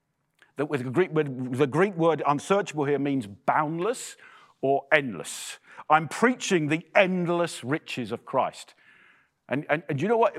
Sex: male